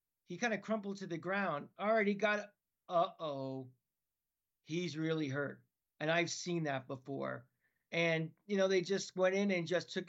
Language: English